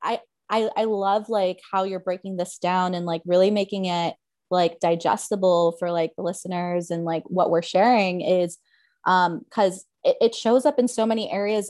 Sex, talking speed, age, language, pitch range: female, 185 wpm, 20-39, English, 175-200 Hz